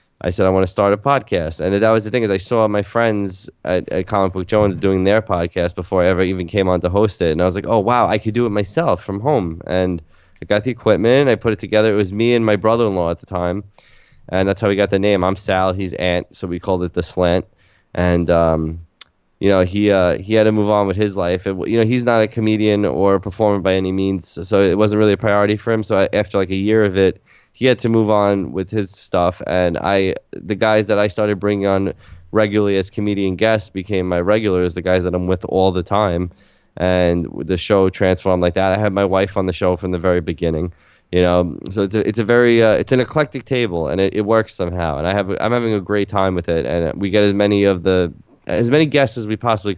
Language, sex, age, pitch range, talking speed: English, male, 20-39, 90-105 Hz, 260 wpm